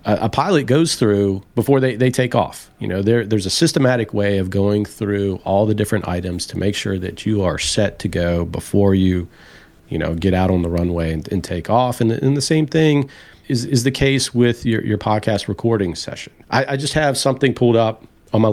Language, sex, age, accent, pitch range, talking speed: English, male, 40-59, American, 95-120 Hz, 225 wpm